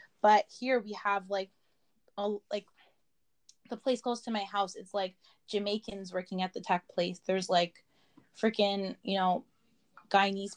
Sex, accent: female, American